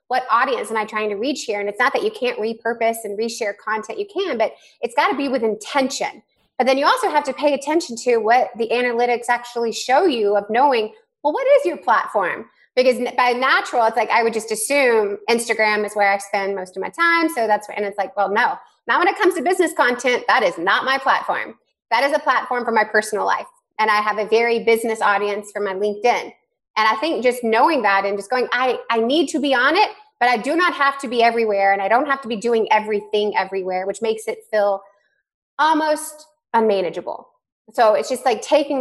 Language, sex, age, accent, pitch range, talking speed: English, female, 20-39, American, 210-265 Hz, 230 wpm